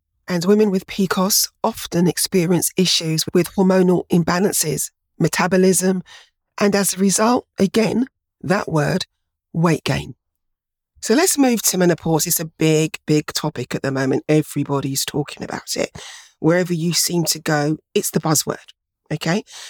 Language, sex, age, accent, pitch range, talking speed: English, female, 40-59, British, 150-195 Hz, 140 wpm